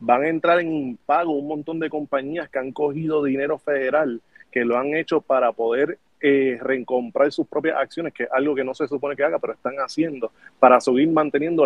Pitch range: 130-165 Hz